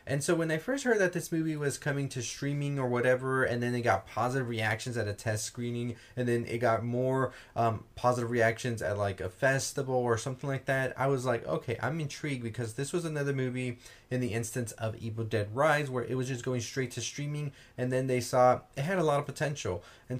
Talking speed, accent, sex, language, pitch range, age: 230 wpm, American, male, English, 115-140 Hz, 20-39